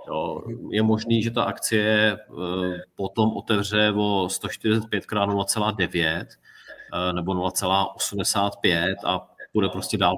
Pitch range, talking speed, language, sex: 105-125 Hz, 95 wpm, Czech, male